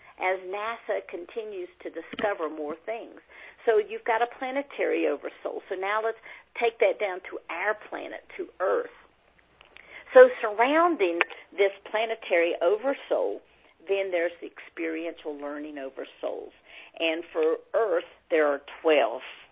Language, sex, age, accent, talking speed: English, female, 50-69, American, 125 wpm